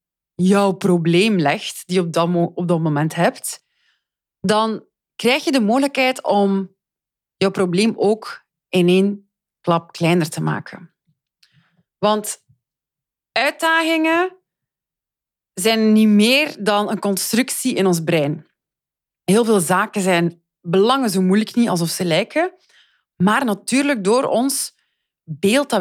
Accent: Dutch